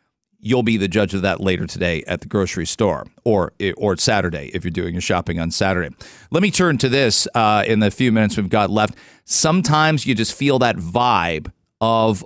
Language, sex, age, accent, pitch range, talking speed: English, male, 40-59, American, 100-130 Hz, 205 wpm